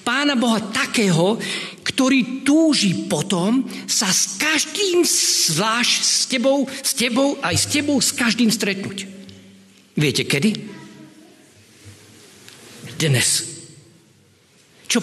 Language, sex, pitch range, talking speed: Slovak, male, 140-215 Hz, 95 wpm